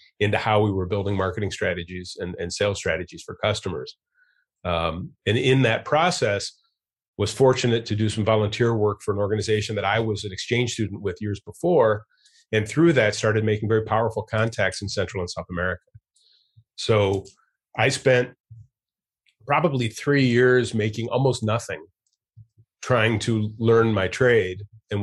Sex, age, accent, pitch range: male, 30-49, American, 95-115 Hz